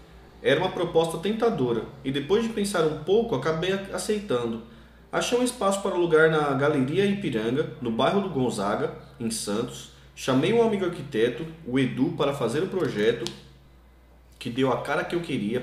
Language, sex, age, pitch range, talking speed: Portuguese, male, 20-39, 120-175 Hz, 170 wpm